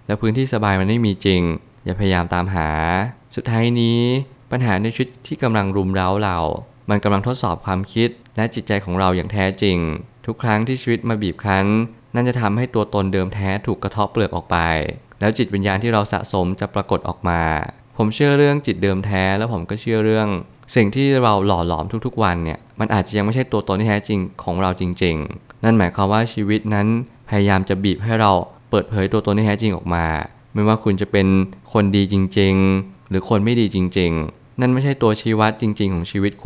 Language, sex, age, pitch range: Thai, male, 20-39, 95-115 Hz